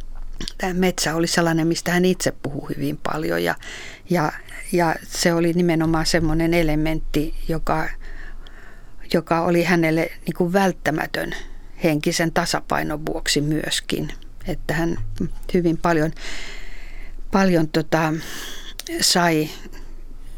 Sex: female